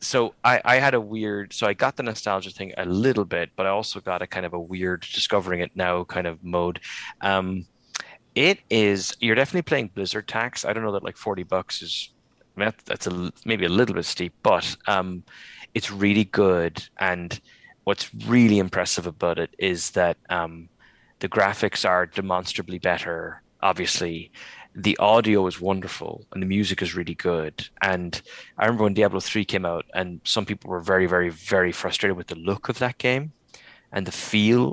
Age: 30-49